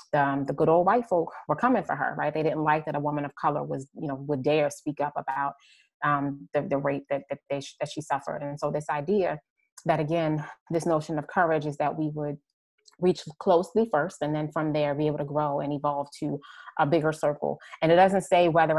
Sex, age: female, 20-39